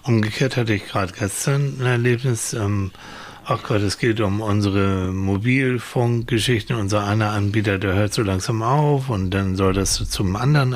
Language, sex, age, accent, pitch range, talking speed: German, male, 60-79, German, 105-140 Hz, 160 wpm